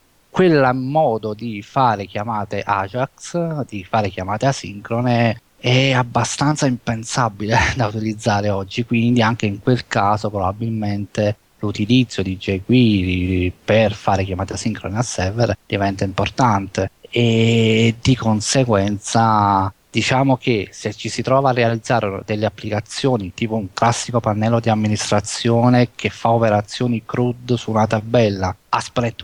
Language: Italian